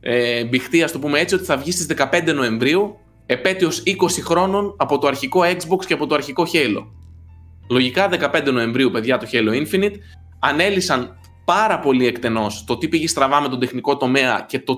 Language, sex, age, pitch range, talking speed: Greek, male, 20-39, 125-155 Hz, 185 wpm